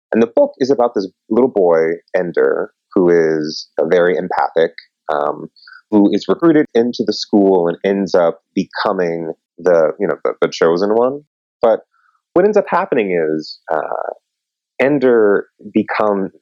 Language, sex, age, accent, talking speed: English, male, 30-49, American, 150 wpm